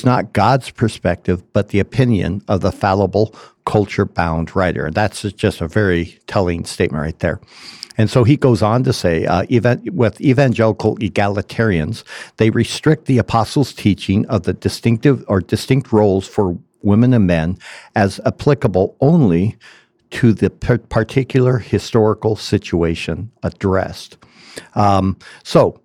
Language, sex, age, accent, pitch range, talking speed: English, male, 60-79, American, 95-120 Hz, 130 wpm